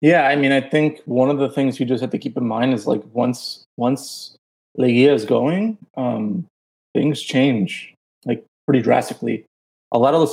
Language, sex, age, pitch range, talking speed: English, male, 30-49, 130-155 Hz, 190 wpm